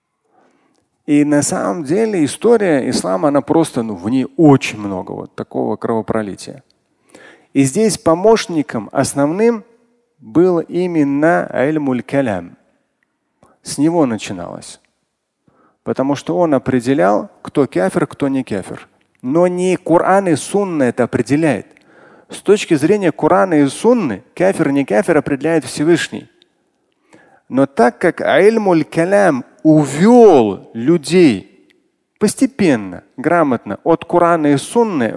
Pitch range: 140-195 Hz